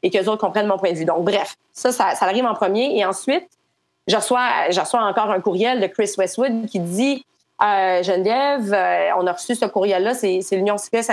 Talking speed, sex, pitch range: 215 wpm, female, 195-230 Hz